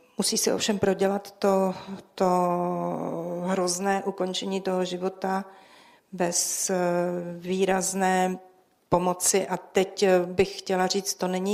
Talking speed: 105 wpm